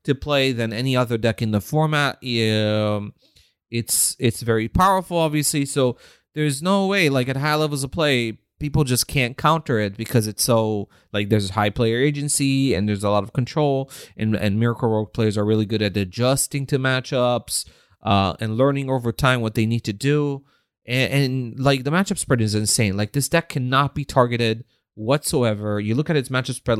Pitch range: 110-140 Hz